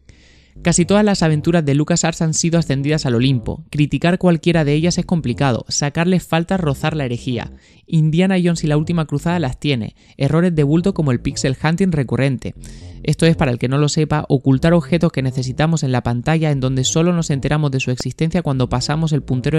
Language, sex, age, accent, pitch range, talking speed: Spanish, male, 20-39, Spanish, 130-165 Hz, 200 wpm